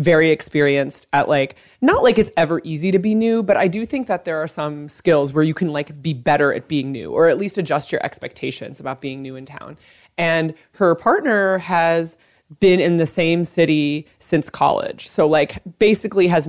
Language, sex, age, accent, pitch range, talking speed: English, female, 20-39, American, 145-180 Hz, 205 wpm